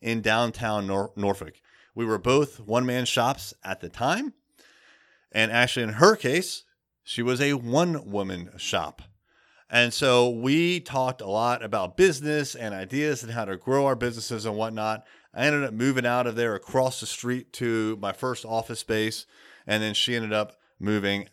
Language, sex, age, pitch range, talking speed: English, male, 30-49, 110-140 Hz, 175 wpm